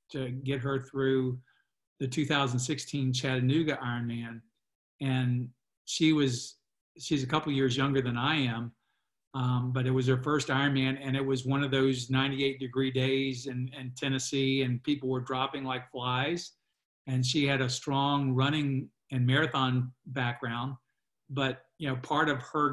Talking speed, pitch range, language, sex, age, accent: 155 wpm, 125-140 Hz, English, male, 50-69, American